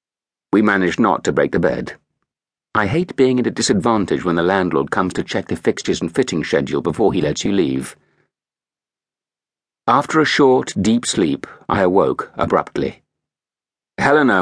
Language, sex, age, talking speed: English, male, 60-79, 160 wpm